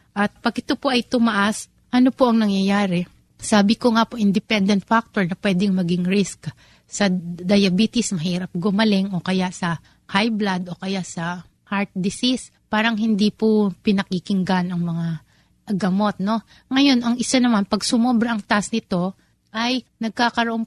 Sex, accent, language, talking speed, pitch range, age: female, native, Filipino, 150 wpm, 190-230 Hz, 30-49